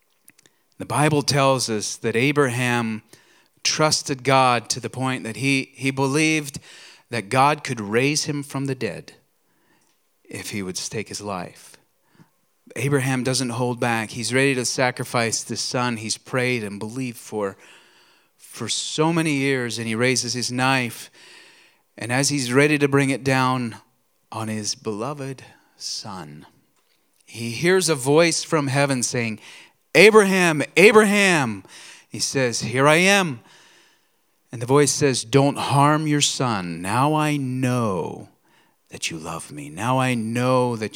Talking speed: 145 wpm